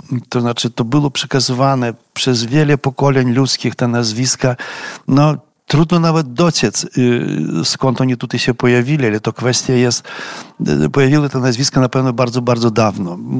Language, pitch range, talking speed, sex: Polish, 115-140 Hz, 145 wpm, male